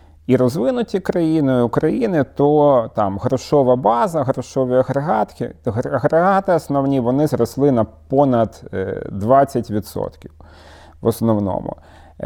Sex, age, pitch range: male, 30-49, 115-145 Hz